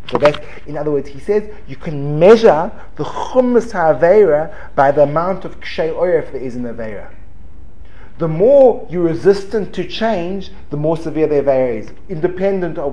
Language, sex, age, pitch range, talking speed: English, male, 30-49, 110-170 Hz, 160 wpm